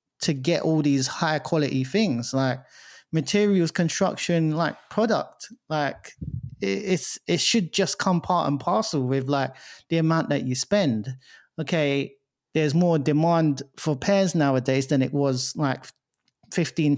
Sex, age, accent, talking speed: male, 30-49, British, 140 wpm